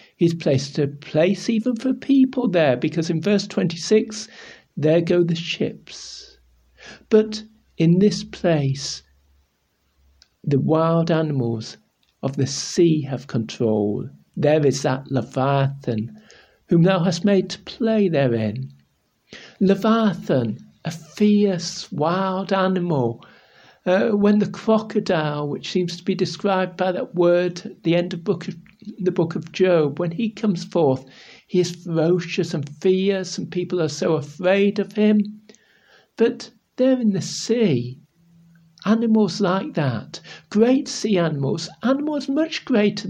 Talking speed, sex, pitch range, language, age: 135 wpm, male, 150-215 Hz, English, 60-79